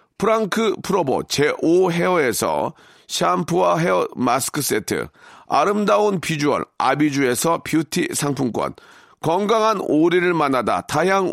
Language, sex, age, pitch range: Korean, male, 40-59, 145-205 Hz